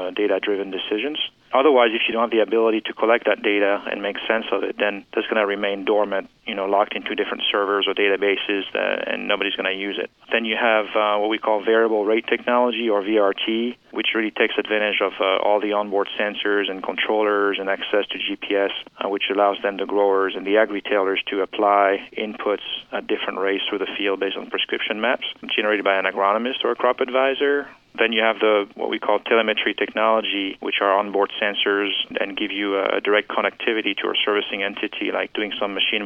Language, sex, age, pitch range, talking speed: English, male, 30-49, 100-110 Hz, 210 wpm